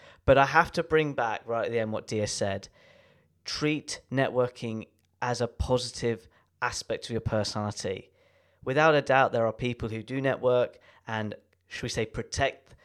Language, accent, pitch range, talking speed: English, British, 110-135 Hz, 170 wpm